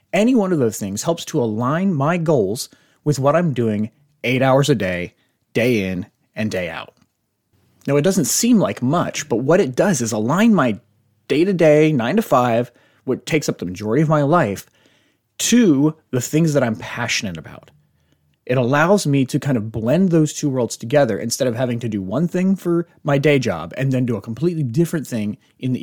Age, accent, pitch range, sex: 30-49, American, 120-160 Hz, male